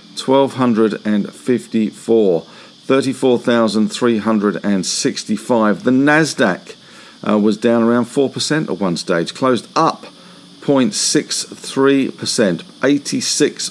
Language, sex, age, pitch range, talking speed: English, male, 50-69, 110-140 Hz, 70 wpm